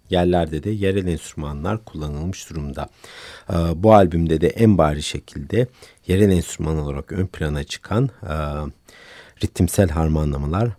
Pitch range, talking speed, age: 80-110 Hz, 110 wpm, 60-79